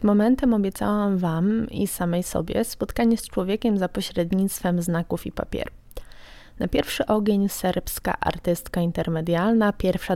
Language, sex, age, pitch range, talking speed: Polish, female, 20-39, 180-210 Hz, 125 wpm